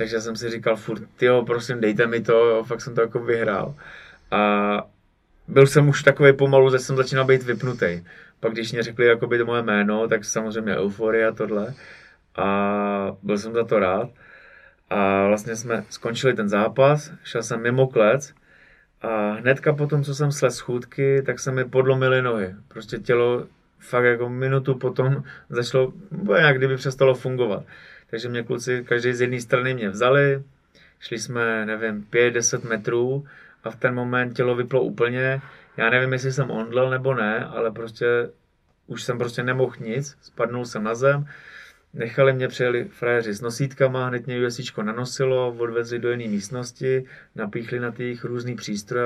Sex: male